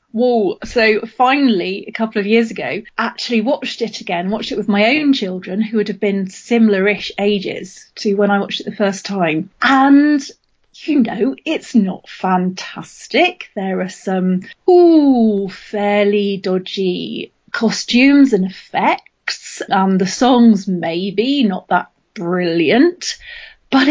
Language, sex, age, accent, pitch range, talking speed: English, female, 30-49, British, 195-245 Hz, 140 wpm